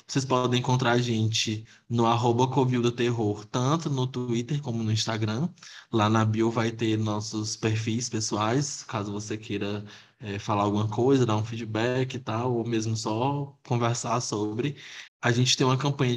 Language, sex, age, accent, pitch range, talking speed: Portuguese, male, 20-39, Brazilian, 110-125 Hz, 165 wpm